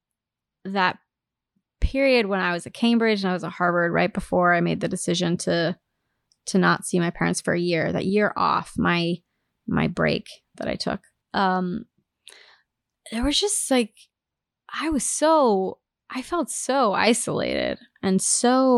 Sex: female